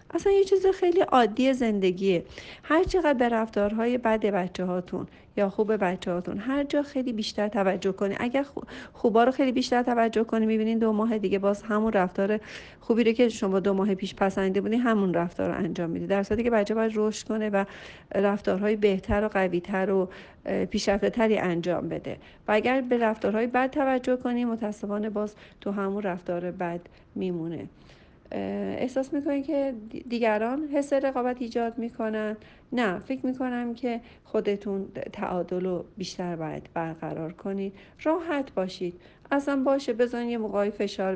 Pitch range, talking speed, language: 190-245 Hz, 155 wpm, Persian